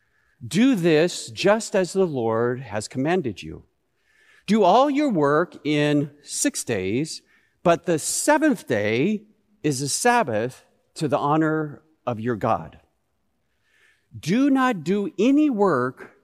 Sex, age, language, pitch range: male, 50-69, English, 130-205 Hz